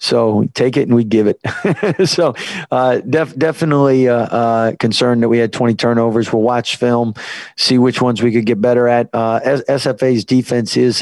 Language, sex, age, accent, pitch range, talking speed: English, male, 40-59, American, 110-120 Hz, 195 wpm